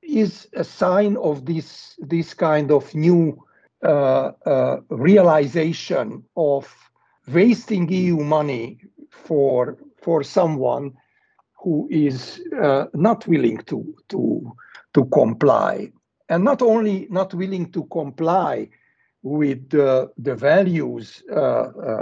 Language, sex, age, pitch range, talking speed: English, male, 60-79, 150-200 Hz, 105 wpm